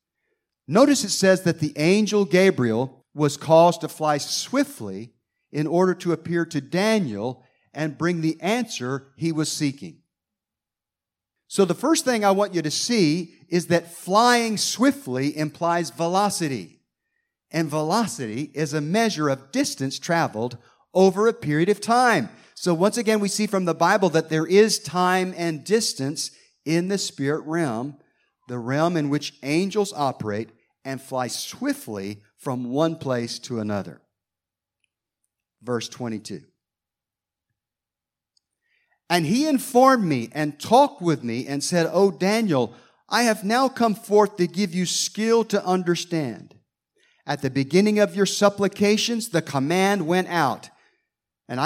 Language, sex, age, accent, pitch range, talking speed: English, male, 50-69, American, 135-195 Hz, 140 wpm